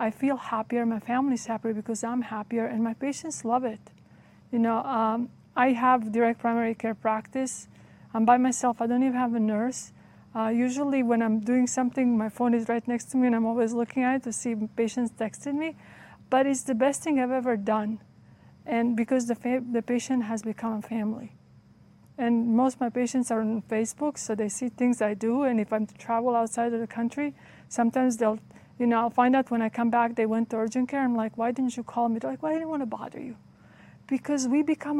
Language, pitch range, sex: English, 225-255 Hz, female